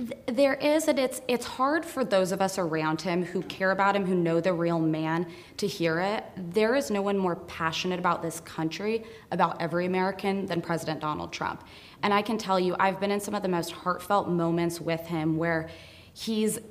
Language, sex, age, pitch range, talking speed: English, female, 20-39, 170-200 Hz, 210 wpm